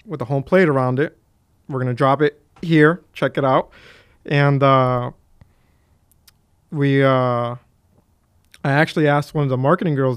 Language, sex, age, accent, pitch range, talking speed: English, male, 20-39, American, 125-150 Hz, 160 wpm